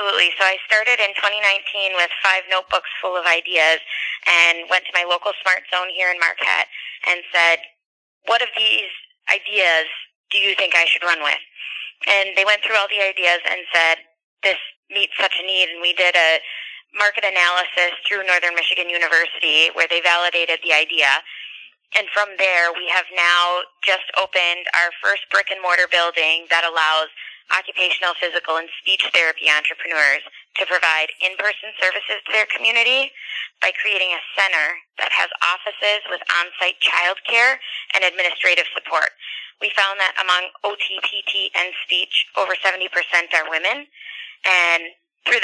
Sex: female